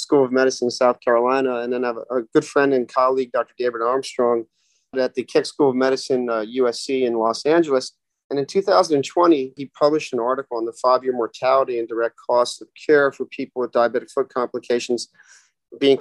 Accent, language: American, English